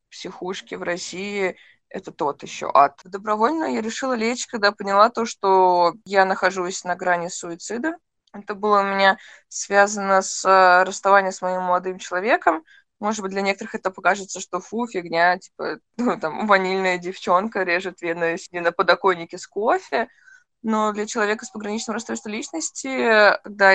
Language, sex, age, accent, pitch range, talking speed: Russian, female, 20-39, native, 180-220 Hz, 150 wpm